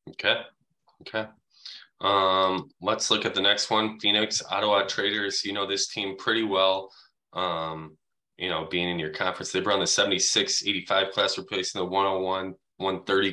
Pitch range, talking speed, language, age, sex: 90-105 Hz, 160 wpm, English, 20-39, male